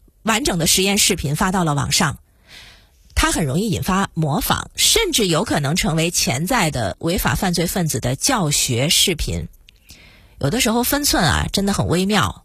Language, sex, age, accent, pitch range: Chinese, female, 30-49, native, 150-215 Hz